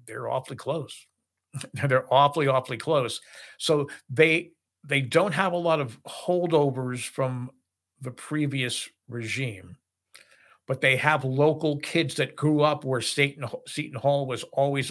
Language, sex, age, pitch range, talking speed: English, male, 50-69, 125-150 Hz, 135 wpm